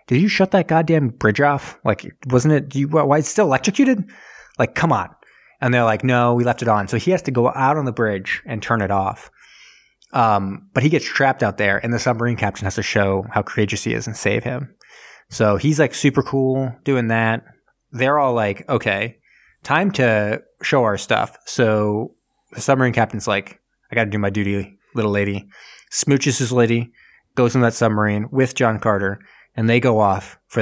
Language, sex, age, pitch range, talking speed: English, male, 20-39, 105-135 Hz, 205 wpm